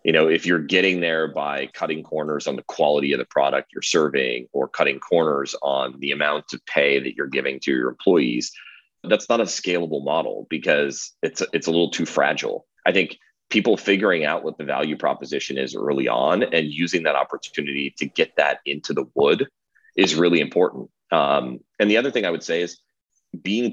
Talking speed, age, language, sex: 195 wpm, 30-49, English, male